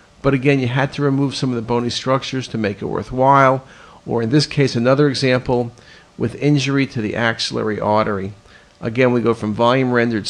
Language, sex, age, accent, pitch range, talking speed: English, male, 50-69, American, 115-145 Hz, 190 wpm